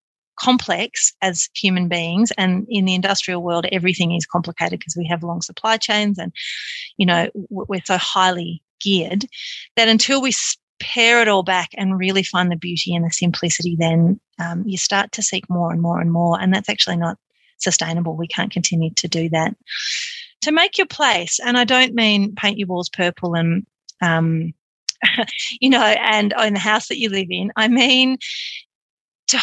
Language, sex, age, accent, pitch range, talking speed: English, female, 30-49, Australian, 175-220 Hz, 180 wpm